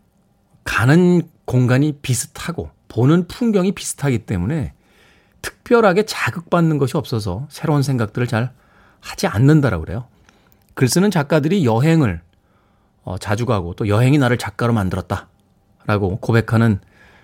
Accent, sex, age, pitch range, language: native, male, 40-59, 100-170 Hz, Korean